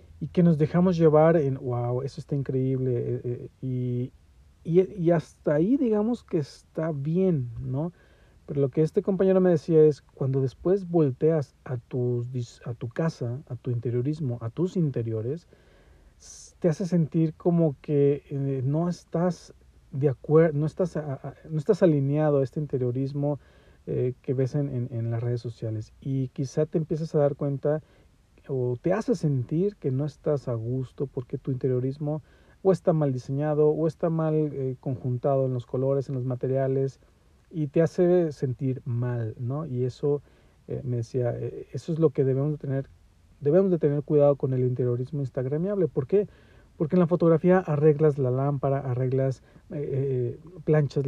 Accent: Mexican